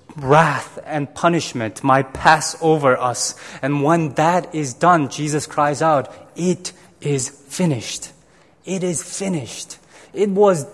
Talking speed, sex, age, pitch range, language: 130 wpm, male, 20-39, 165-225 Hz, English